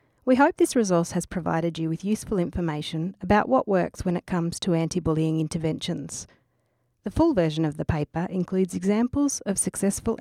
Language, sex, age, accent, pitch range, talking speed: English, female, 40-59, Australian, 155-205 Hz, 170 wpm